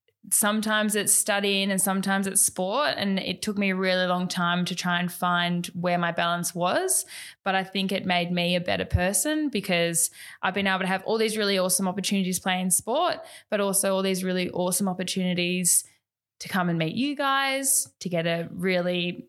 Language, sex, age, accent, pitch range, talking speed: English, female, 10-29, Australian, 175-210 Hz, 195 wpm